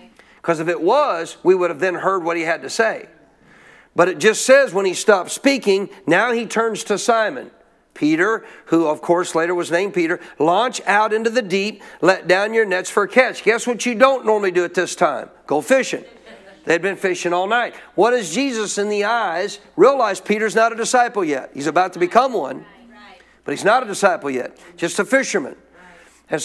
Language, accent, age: English, American, 50-69